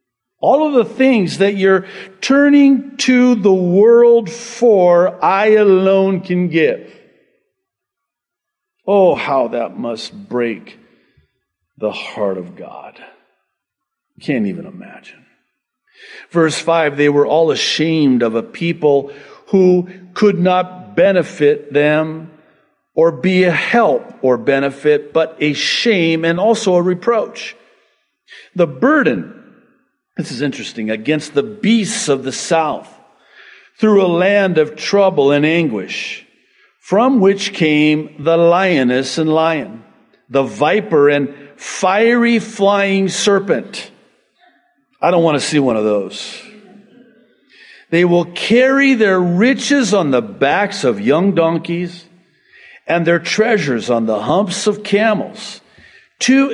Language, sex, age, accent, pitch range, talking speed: English, male, 50-69, American, 155-230 Hz, 120 wpm